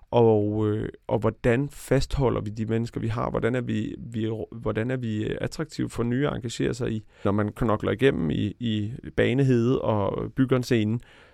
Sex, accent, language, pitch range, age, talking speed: male, native, Danish, 105-125 Hz, 30-49, 185 wpm